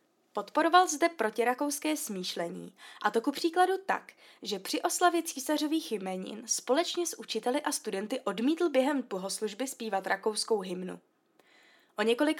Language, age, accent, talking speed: Czech, 20-39, native, 130 wpm